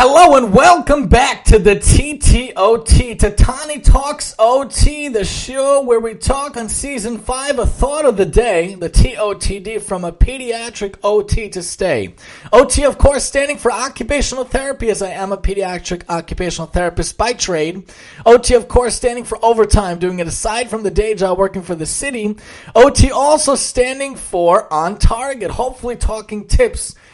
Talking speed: 160 wpm